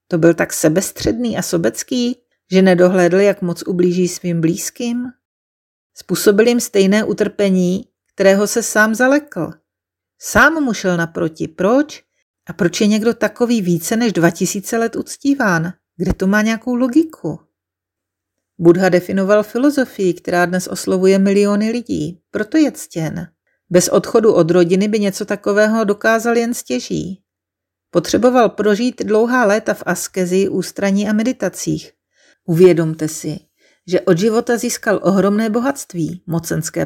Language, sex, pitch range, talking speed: Czech, female, 175-225 Hz, 130 wpm